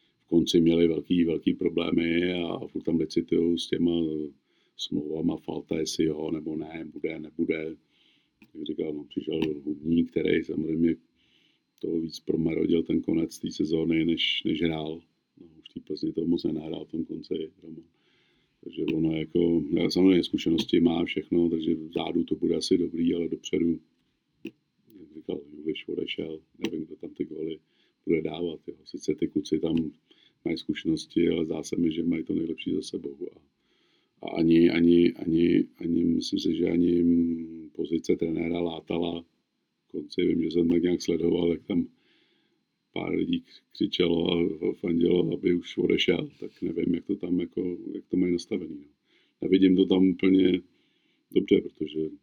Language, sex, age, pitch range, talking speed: Czech, male, 50-69, 80-90 Hz, 155 wpm